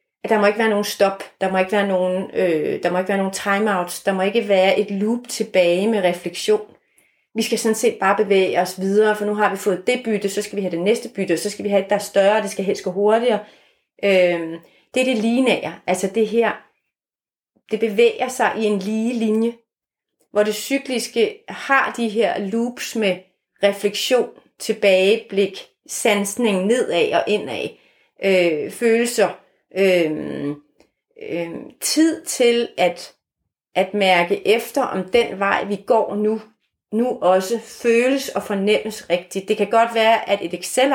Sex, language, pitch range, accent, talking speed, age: female, Danish, 195-230 Hz, native, 170 wpm, 30-49